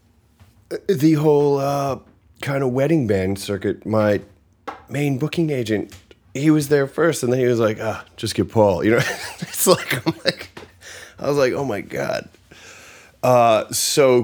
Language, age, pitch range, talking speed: English, 30-49, 95-125 Hz, 160 wpm